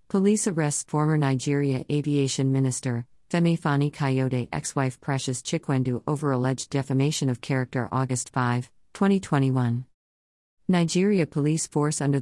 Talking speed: 120 wpm